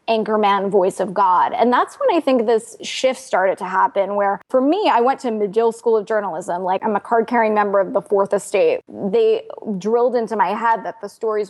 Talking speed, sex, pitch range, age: 215 wpm, female, 200-245 Hz, 20-39